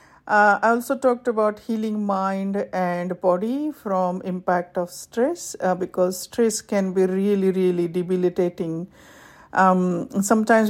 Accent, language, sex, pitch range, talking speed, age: Indian, English, female, 180-215 Hz, 130 wpm, 50-69